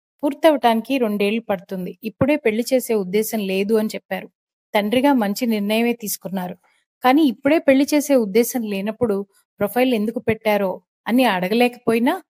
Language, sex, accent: Telugu, female, native